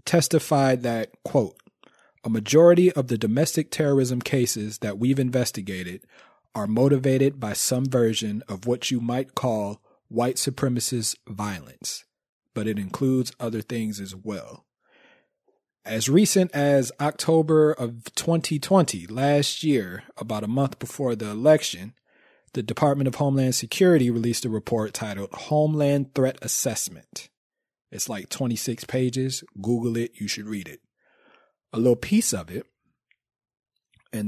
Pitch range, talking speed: 110-140 Hz, 130 wpm